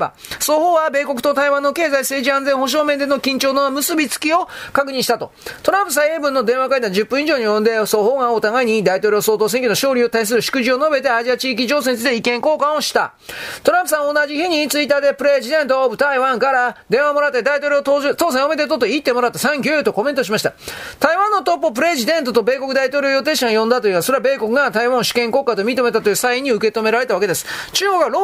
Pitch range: 245-300 Hz